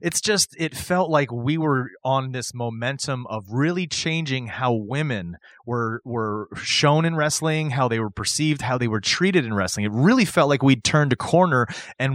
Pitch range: 115-150 Hz